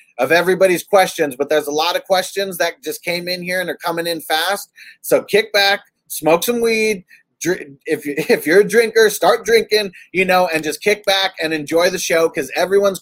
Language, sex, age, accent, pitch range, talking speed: English, male, 30-49, American, 160-200 Hz, 210 wpm